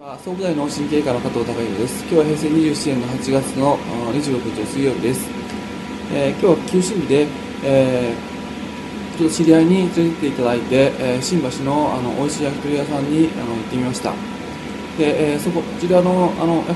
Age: 20-39